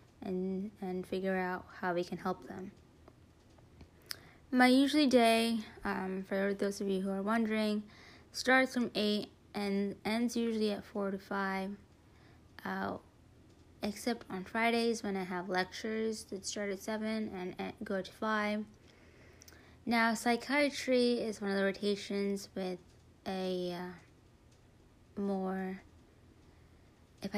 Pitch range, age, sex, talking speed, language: 185-220 Hz, 20-39, female, 125 wpm, English